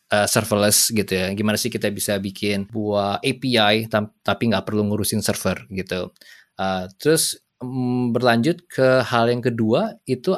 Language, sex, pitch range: Indonesian, male, 105-130 Hz